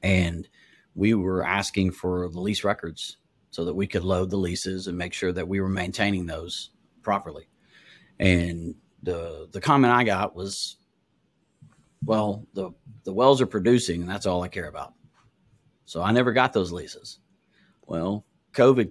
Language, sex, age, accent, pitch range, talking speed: English, male, 40-59, American, 90-105 Hz, 160 wpm